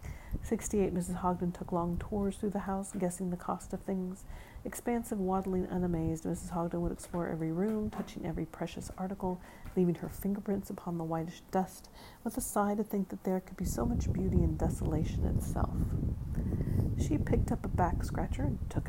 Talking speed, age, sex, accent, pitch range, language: 180 wpm, 40-59, female, American, 175-195 Hz, English